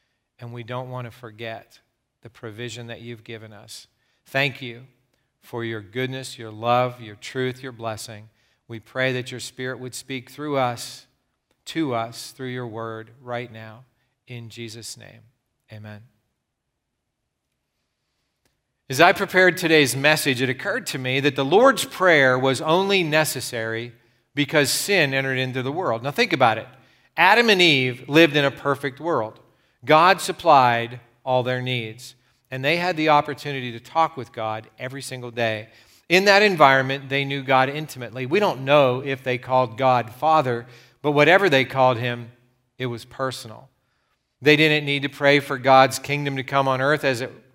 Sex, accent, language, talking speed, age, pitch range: male, American, English, 165 wpm, 40-59, 120-140 Hz